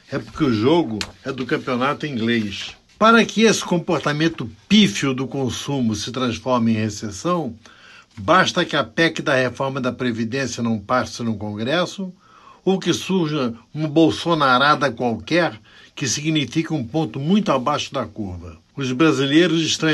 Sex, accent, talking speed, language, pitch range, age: male, Brazilian, 145 wpm, Portuguese, 115-160 Hz, 60-79